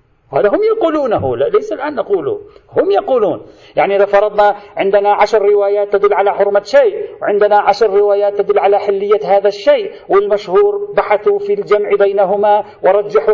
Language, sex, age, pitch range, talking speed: Arabic, male, 50-69, 190-315 Hz, 150 wpm